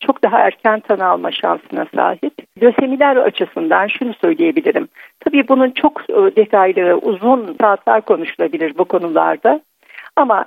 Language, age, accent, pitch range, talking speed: Turkish, 60-79, native, 195-260 Hz, 120 wpm